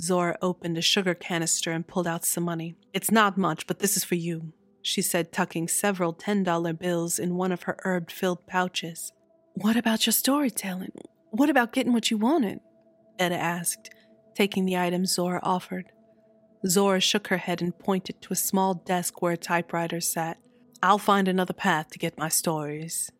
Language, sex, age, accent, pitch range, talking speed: English, female, 30-49, American, 175-220 Hz, 180 wpm